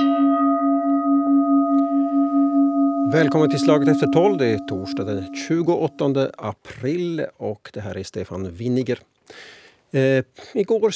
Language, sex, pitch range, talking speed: Swedish, male, 115-145 Hz, 95 wpm